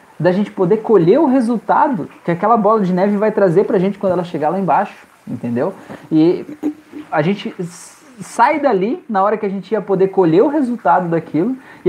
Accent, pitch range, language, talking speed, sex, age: Brazilian, 155-210 Hz, Portuguese, 190 wpm, male, 20-39